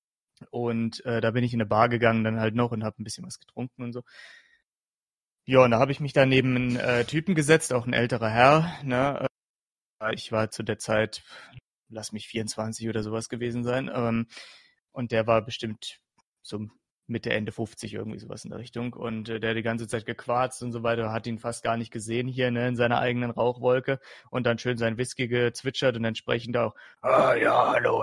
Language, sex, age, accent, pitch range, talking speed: German, male, 30-49, German, 115-130 Hz, 210 wpm